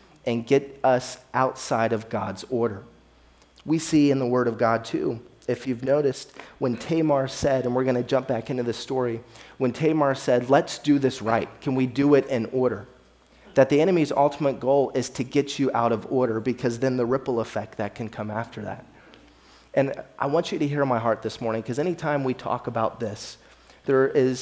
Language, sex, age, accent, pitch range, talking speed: English, male, 30-49, American, 115-135 Hz, 200 wpm